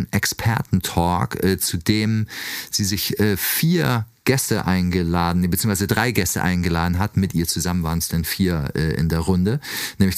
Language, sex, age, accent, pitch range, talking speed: German, male, 40-59, German, 95-115 Hz, 145 wpm